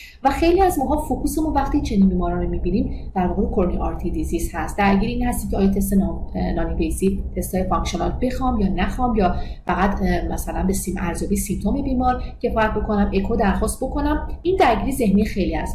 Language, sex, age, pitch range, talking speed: Persian, female, 30-49, 180-250 Hz, 185 wpm